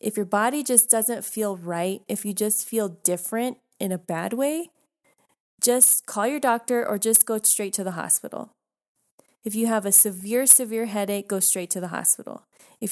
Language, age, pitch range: English, 20-39, 195-230 Hz